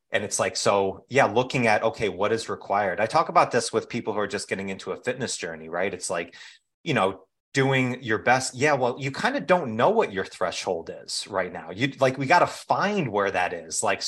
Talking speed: 240 wpm